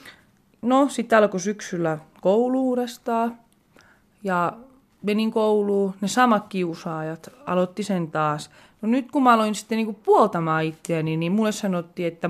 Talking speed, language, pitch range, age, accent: 140 wpm, Finnish, 175-225 Hz, 30-49, native